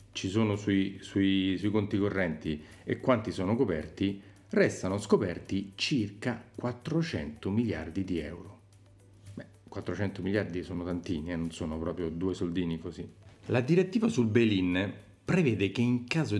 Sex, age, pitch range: male, 40-59, 90-115 Hz